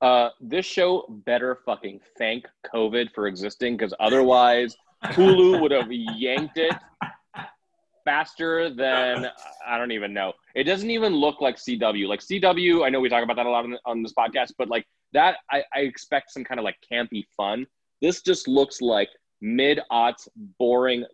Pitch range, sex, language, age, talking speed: 105-135 Hz, male, English, 20-39, 170 wpm